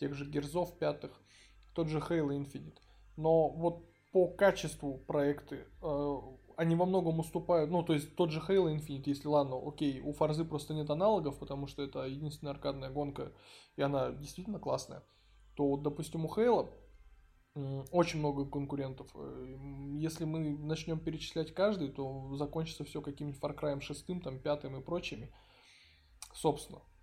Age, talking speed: 20-39, 145 wpm